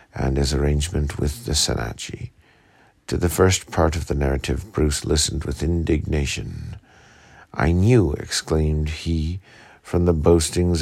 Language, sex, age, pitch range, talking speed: English, male, 50-69, 80-90 Hz, 135 wpm